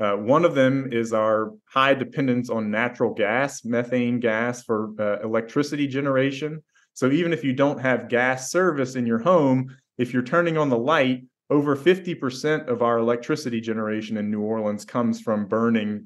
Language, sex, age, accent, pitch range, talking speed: English, male, 30-49, American, 110-130 Hz, 170 wpm